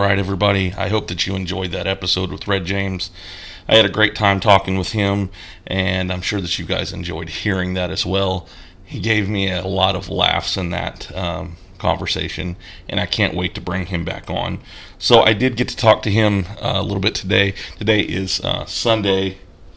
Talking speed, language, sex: 210 wpm, English, male